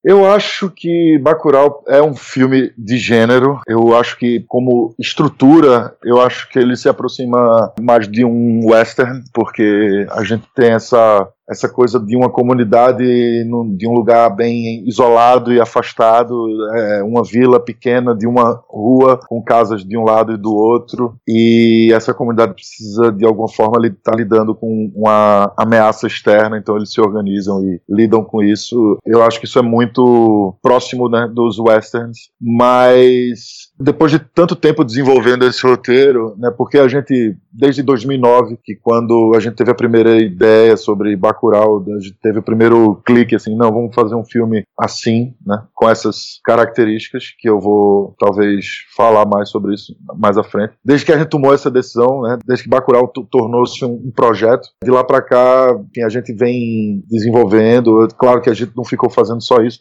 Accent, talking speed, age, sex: Brazilian, 180 wpm, 20-39, male